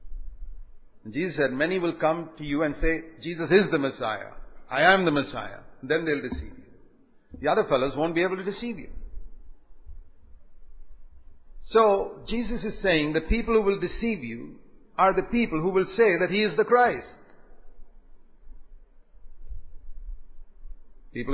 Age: 50-69